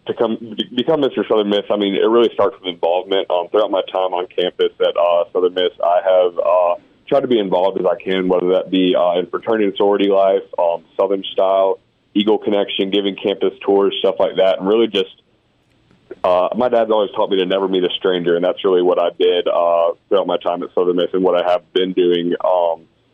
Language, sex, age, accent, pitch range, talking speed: English, male, 30-49, American, 90-145 Hz, 225 wpm